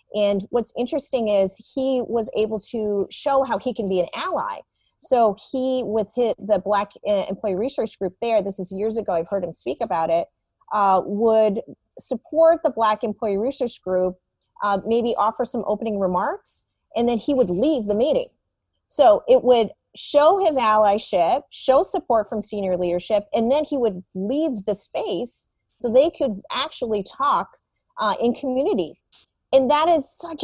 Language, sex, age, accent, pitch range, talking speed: English, female, 30-49, American, 195-255 Hz, 170 wpm